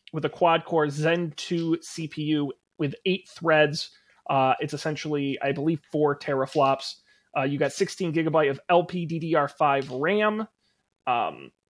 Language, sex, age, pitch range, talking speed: English, male, 30-49, 140-170 Hz, 130 wpm